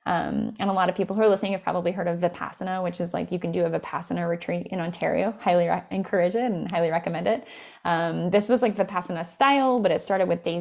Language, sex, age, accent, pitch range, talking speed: English, female, 10-29, American, 180-260 Hz, 250 wpm